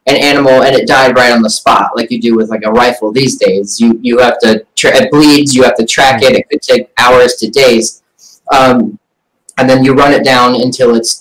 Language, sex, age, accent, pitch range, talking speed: English, male, 20-39, American, 125-155 Hz, 240 wpm